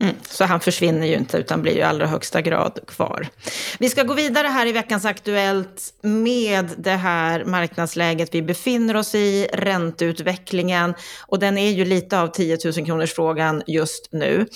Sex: female